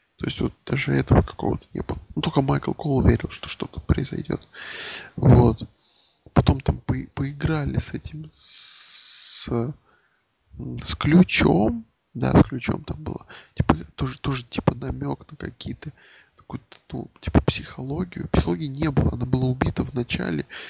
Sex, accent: male, native